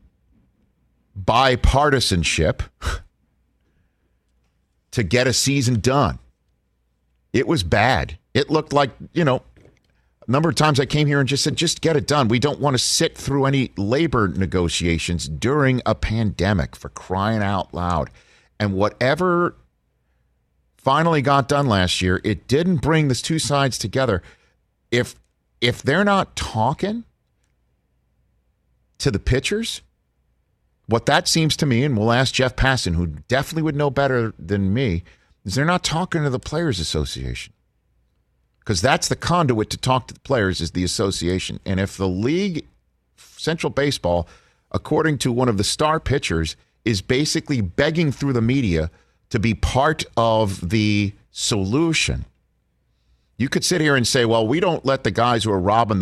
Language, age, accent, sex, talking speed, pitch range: English, 50-69, American, male, 155 wpm, 90-140 Hz